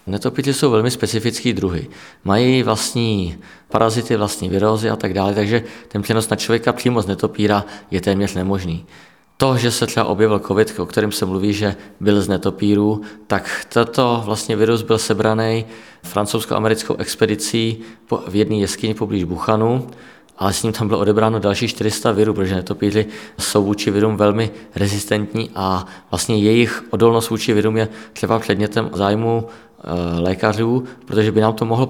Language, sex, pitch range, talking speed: Czech, male, 105-115 Hz, 155 wpm